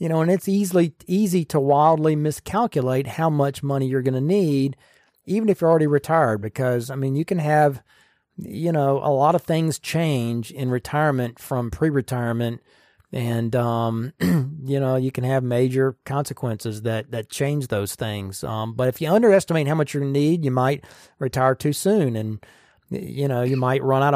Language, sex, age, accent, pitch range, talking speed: English, male, 40-59, American, 125-155 Hz, 180 wpm